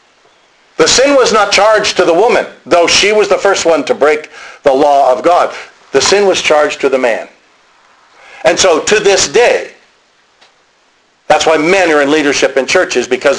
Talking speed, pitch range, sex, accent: 185 wpm, 135-175 Hz, male, American